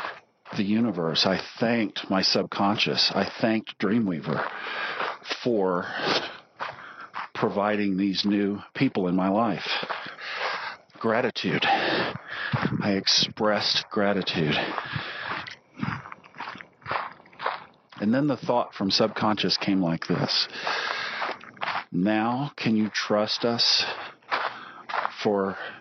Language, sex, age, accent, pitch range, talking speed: English, male, 40-59, American, 90-105 Hz, 85 wpm